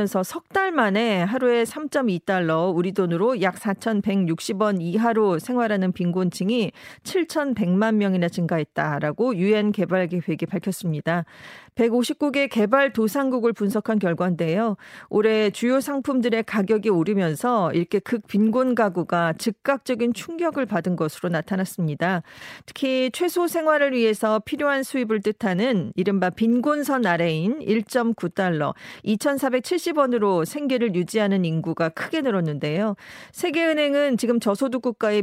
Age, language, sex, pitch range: 40-59, Korean, female, 185-250 Hz